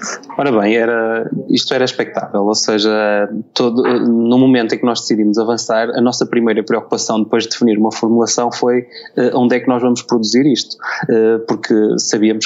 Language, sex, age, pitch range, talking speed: Portuguese, male, 20-39, 115-130 Hz, 160 wpm